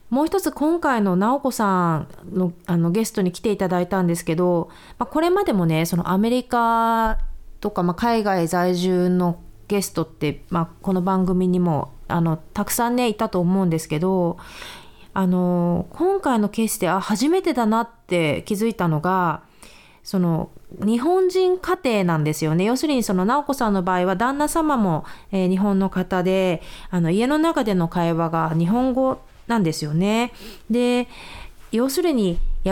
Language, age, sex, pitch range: Japanese, 30-49, female, 170-235 Hz